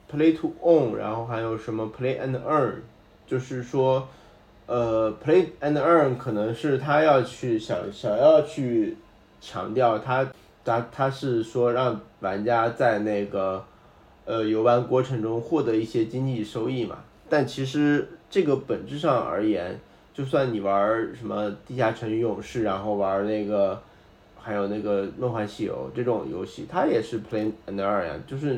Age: 20-39